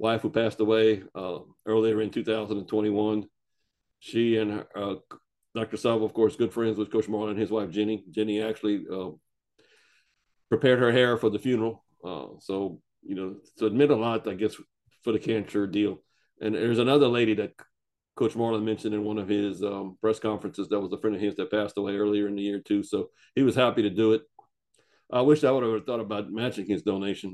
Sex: male